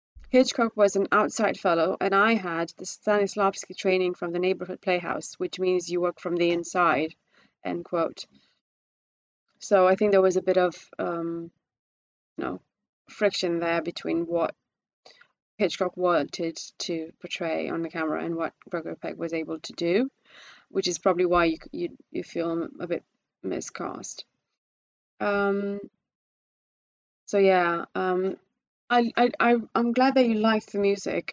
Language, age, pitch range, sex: English, 20-39, 170-200 Hz, female